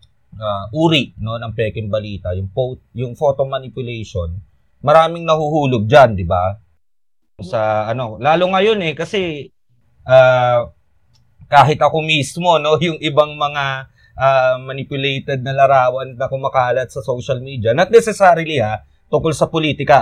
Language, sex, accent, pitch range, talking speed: Filipino, male, native, 115-160 Hz, 135 wpm